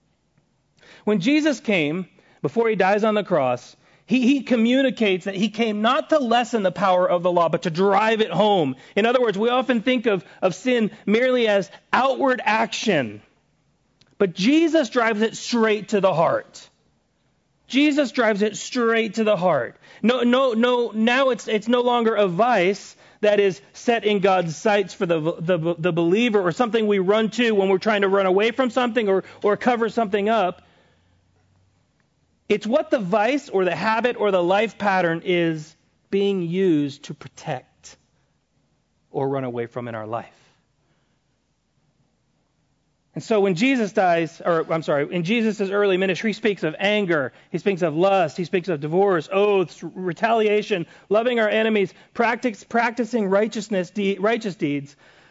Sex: male